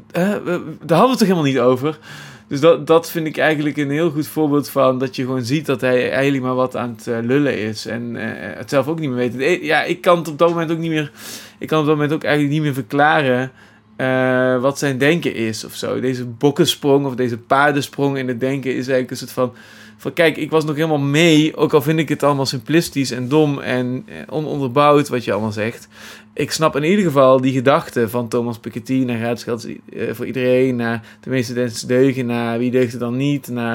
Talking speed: 220 wpm